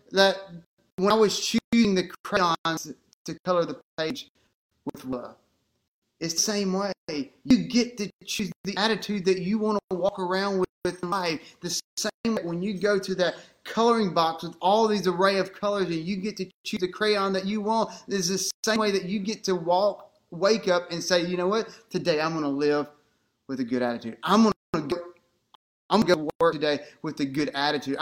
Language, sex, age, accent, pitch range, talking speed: English, male, 30-49, American, 150-200 Hz, 200 wpm